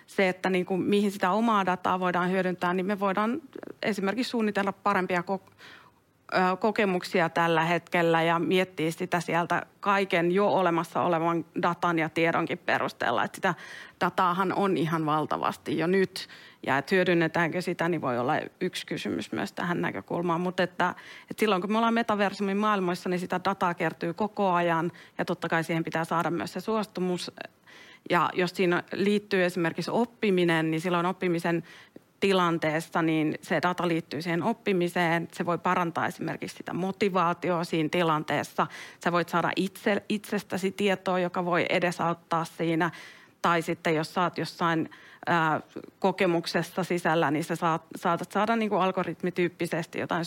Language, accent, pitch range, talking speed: Finnish, native, 170-195 Hz, 150 wpm